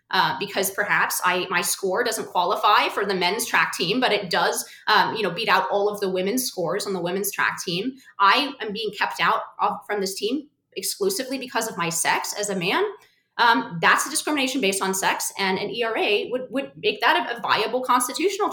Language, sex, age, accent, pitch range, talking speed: English, female, 30-49, American, 190-270 Hz, 205 wpm